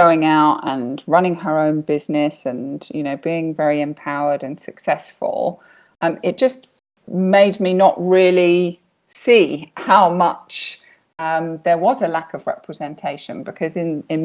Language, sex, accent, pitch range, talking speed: English, female, British, 155-185 Hz, 145 wpm